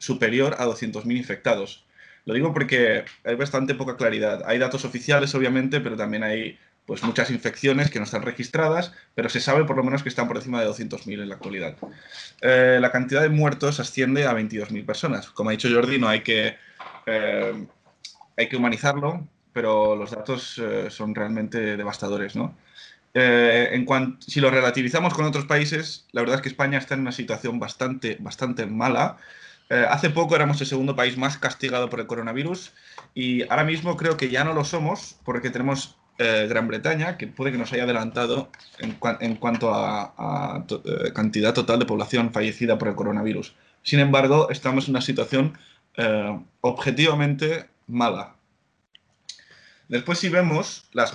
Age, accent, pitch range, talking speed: 20-39, Spanish, 115-140 Hz, 175 wpm